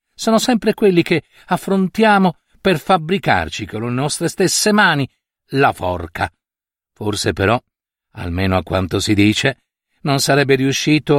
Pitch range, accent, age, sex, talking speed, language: 110-160 Hz, native, 50-69, male, 130 wpm, Italian